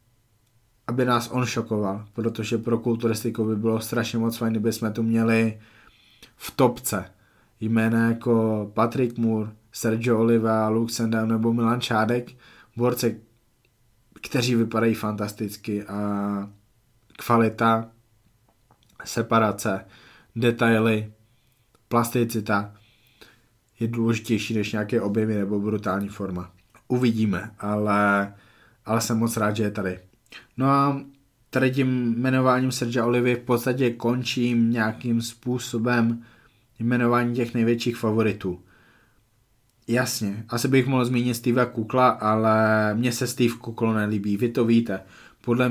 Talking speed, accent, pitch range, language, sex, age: 115 wpm, native, 110-120 Hz, Czech, male, 20-39